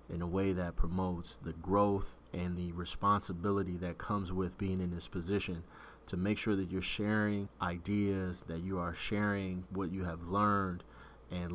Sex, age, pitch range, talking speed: male, 30-49, 90-105 Hz, 170 wpm